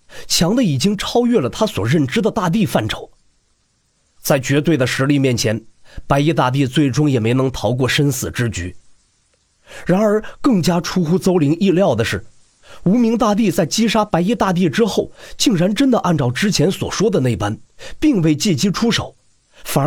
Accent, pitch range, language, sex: native, 135-205 Hz, Chinese, male